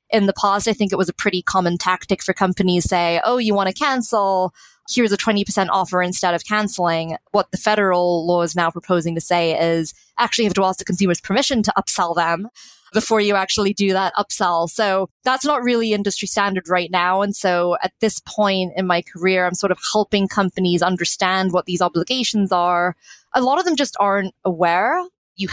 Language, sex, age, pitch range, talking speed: English, female, 20-39, 180-210 Hz, 205 wpm